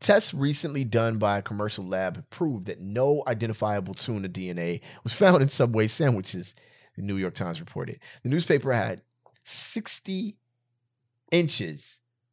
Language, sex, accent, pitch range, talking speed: English, male, American, 100-135 Hz, 135 wpm